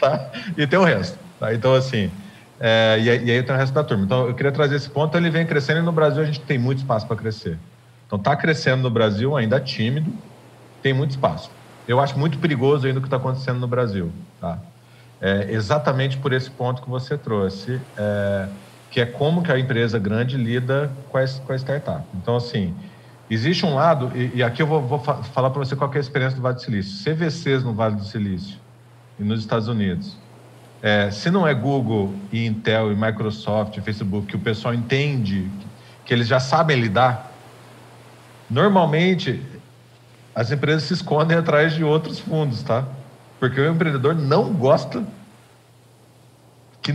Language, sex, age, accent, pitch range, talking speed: Portuguese, male, 40-59, Brazilian, 115-150 Hz, 190 wpm